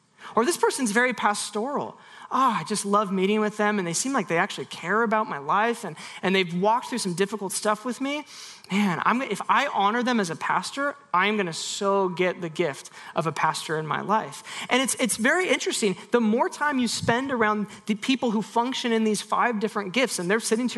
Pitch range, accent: 190-230 Hz, American